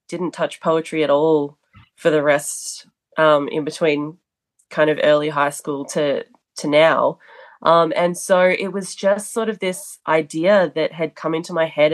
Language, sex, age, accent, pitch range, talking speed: English, female, 20-39, Australian, 160-200 Hz, 175 wpm